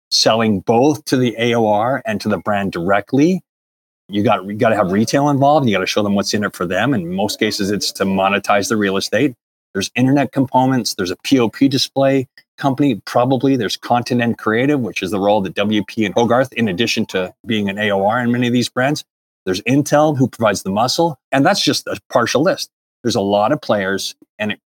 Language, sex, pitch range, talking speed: English, male, 95-125 Hz, 215 wpm